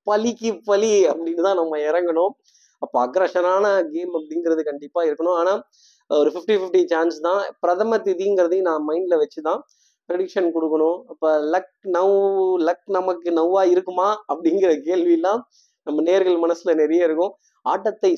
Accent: native